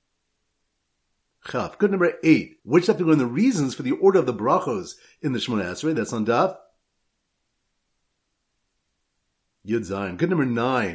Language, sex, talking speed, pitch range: English, male, 150 wpm, 100-165 Hz